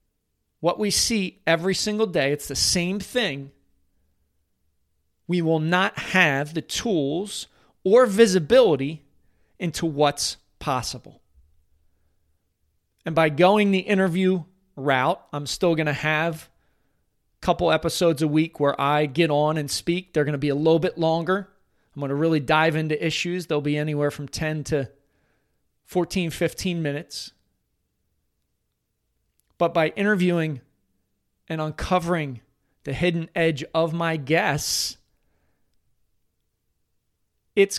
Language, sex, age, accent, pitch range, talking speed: English, male, 40-59, American, 140-180 Hz, 125 wpm